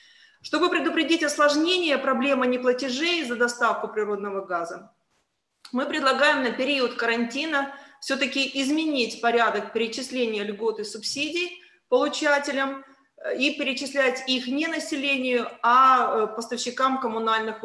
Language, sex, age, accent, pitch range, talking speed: Ukrainian, female, 30-49, native, 225-280 Hz, 100 wpm